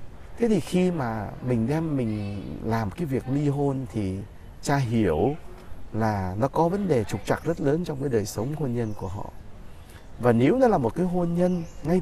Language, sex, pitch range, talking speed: Vietnamese, male, 105-160 Hz, 205 wpm